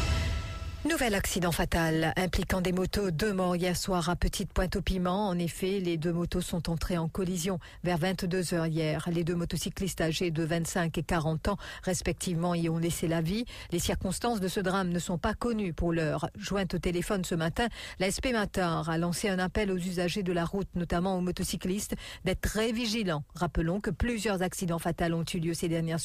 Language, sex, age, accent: English, female, 50-69, French